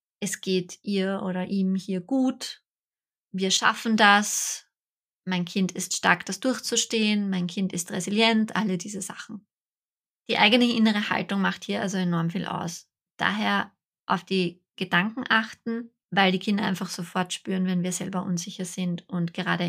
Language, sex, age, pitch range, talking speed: German, female, 20-39, 180-215 Hz, 155 wpm